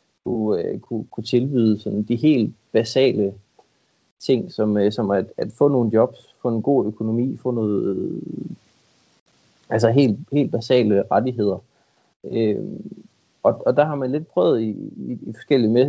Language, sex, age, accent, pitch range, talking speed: Danish, male, 30-49, native, 110-135 Hz, 115 wpm